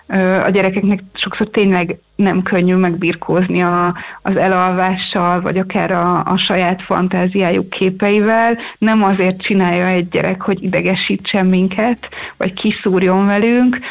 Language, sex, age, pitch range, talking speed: Hungarian, female, 30-49, 185-215 Hz, 120 wpm